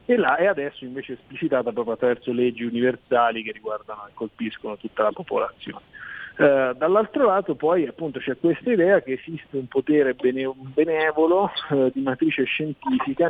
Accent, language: native, Italian